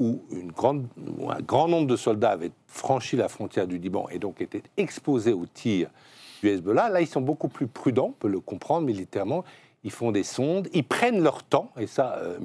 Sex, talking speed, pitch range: male, 215 wpm, 105-160 Hz